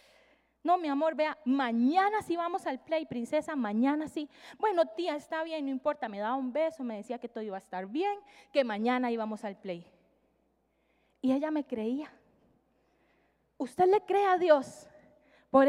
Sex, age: female, 20-39